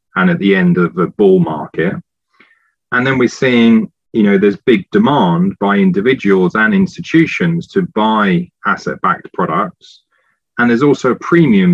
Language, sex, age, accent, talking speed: Hebrew, male, 40-59, British, 155 wpm